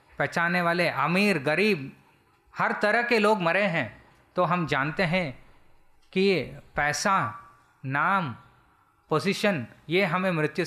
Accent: native